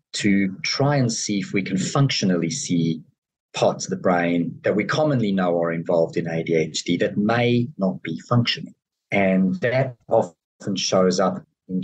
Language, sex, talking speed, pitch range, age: English, male, 160 wpm, 85-120 Hz, 40-59